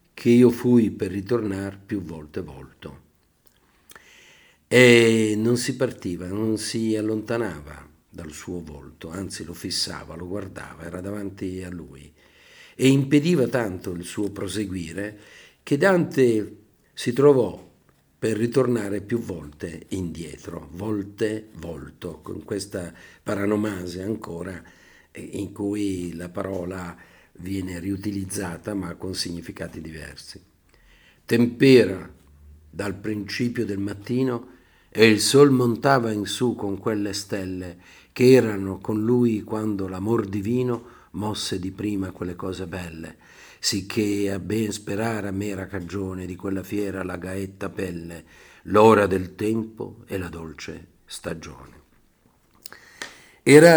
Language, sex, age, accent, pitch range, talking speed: Italian, male, 50-69, native, 90-110 Hz, 120 wpm